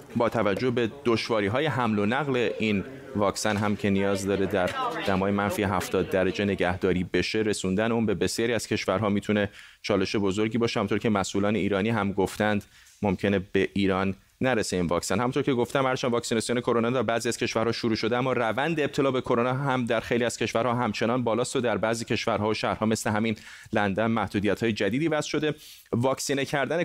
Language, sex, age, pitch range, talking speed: Persian, male, 30-49, 110-150 Hz, 185 wpm